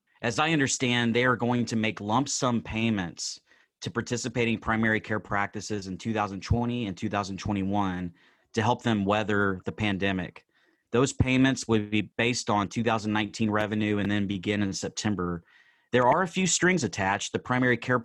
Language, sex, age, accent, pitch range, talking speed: English, male, 30-49, American, 100-120 Hz, 160 wpm